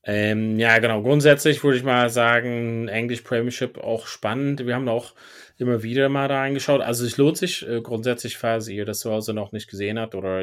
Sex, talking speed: male, 205 wpm